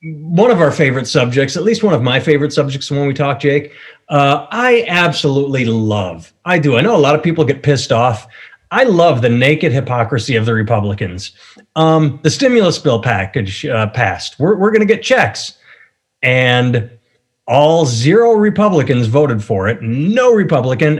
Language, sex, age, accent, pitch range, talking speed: English, male, 30-49, American, 125-160 Hz, 170 wpm